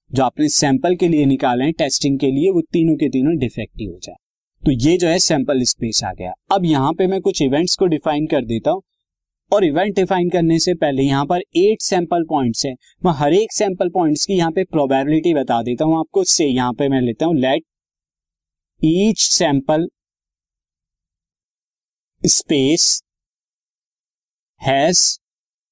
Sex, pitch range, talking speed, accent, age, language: male, 135-175 Hz, 170 wpm, native, 20-39, Hindi